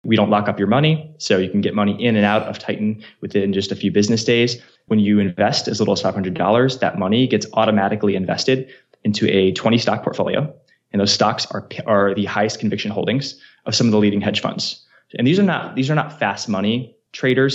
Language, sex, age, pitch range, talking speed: English, male, 20-39, 100-120 Hz, 220 wpm